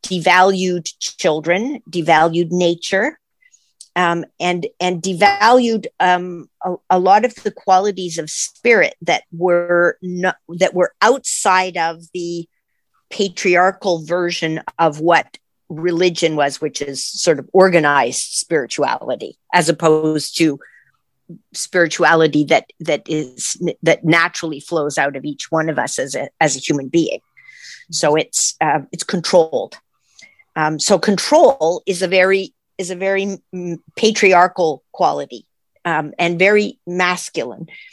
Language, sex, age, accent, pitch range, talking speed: English, female, 50-69, American, 160-195 Hz, 125 wpm